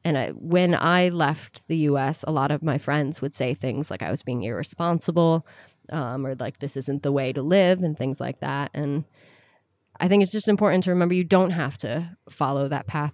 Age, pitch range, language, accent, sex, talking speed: 20-39, 145-180 Hz, English, American, female, 215 wpm